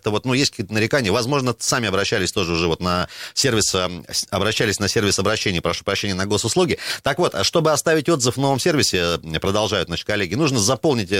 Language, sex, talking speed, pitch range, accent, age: Russian, male, 190 wpm, 95-125 Hz, native, 30-49